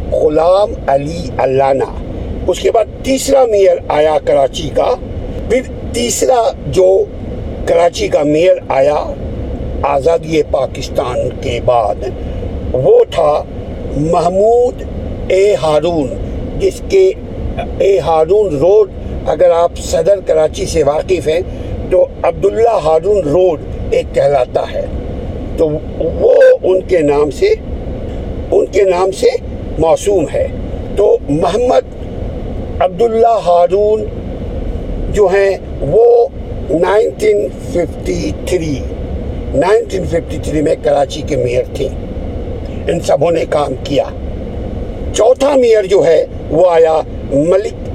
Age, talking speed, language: 60-79, 110 wpm, Urdu